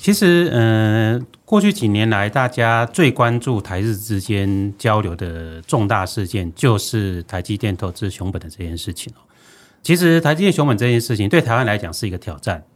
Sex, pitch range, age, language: male, 100-130 Hz, 30-49, Chinese